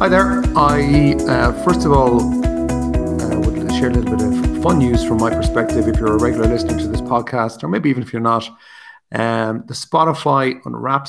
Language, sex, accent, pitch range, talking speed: English, male, Irish, 115-150 Hz, 200 wpm